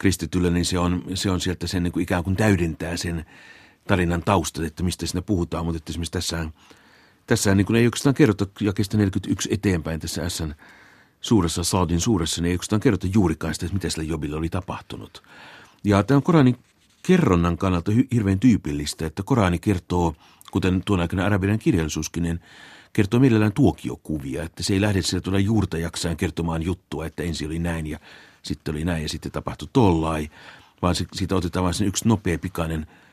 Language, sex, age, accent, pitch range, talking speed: Finnish, male, 60-79, native, 85-105 Hz, 175 wpm